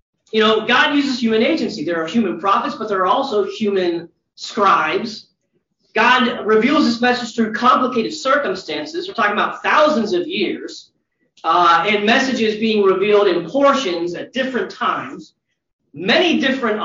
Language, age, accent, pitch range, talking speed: English, 40-59, American, 185-255 Hz, 145 wpm